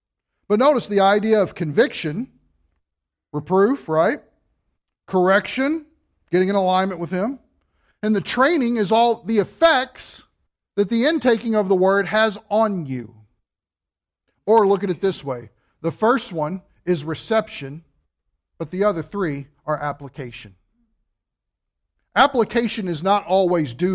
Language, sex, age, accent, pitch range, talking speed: English, male, 40-59, American, 135-215 Hz, 130 wpm